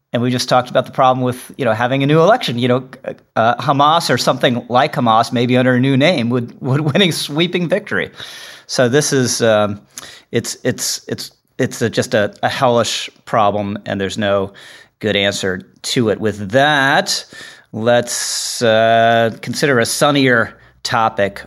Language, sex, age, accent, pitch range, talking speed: English, male, 40-59, American, 115-140 Hz, 175 wpm